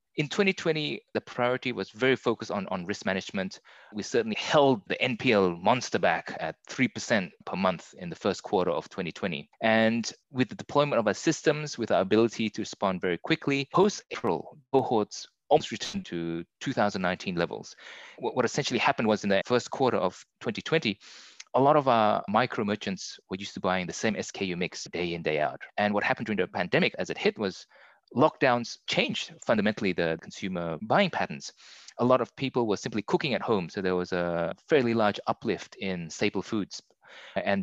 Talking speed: 185 wpm